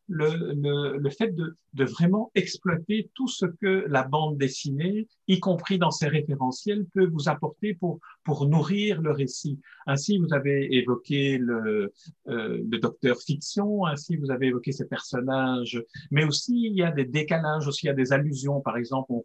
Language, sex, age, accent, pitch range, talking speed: French, male, 50-69, French, 130-165 Hz, 180 wpm